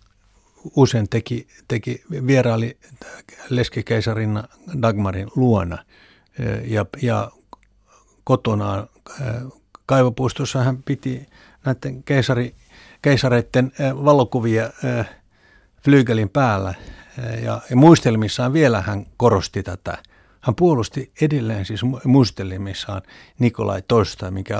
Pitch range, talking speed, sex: 100-130 Hz, 80 wpm, male